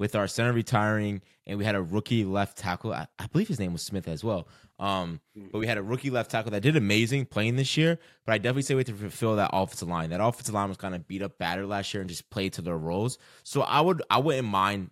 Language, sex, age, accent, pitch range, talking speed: English, male, 20-39, American, 95-120 Hz, 275 wpm